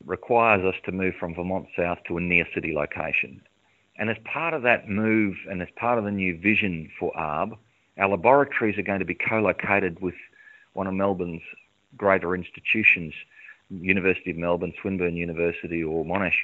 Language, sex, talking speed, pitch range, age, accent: English, male, 170 wpm, 90-110 Hz, 40-59, Australian